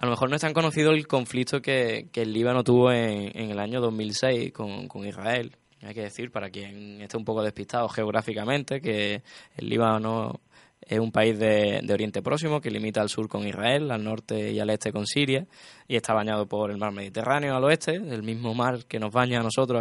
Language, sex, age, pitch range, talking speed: Spanish, male, 10-29, 105-125 Hz, 220 wpm